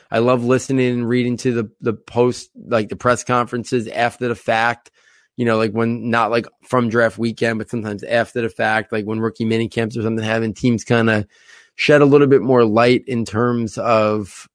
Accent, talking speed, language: American, 200 wpm, English